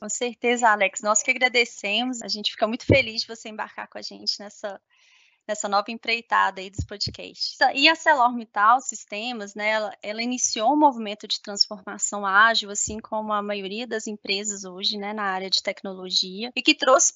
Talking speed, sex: 180 wpm, female